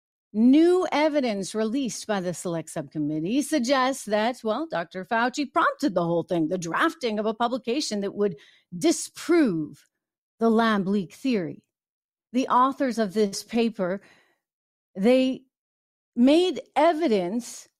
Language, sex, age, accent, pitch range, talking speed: English, female, 40-59, American, 190-270 Hz, 120 wpm